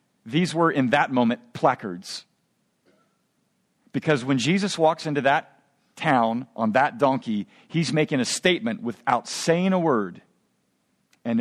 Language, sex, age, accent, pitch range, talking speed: English, male, 50-69, American, 140-195 Hz, 130 wpm